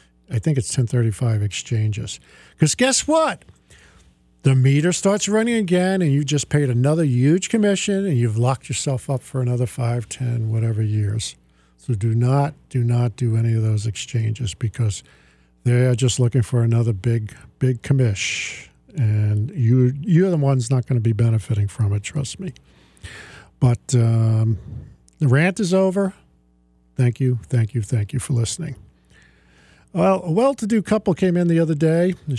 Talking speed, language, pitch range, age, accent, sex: 165 wpm, English, 110-155 Hz, 50-69, American, male